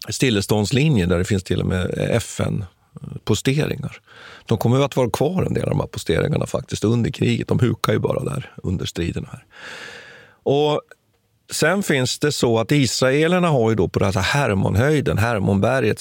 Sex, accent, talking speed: male, native, 175 wpm